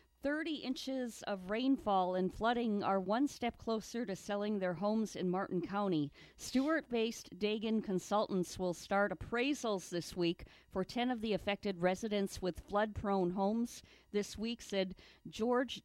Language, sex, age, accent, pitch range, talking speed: English, female, 50-69, American, 180-230 Hz, 145 wpm